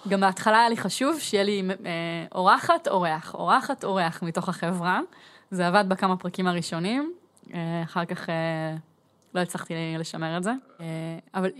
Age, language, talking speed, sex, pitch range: 20-39, Hebrew, 155 wpm, female, 180-225 Hz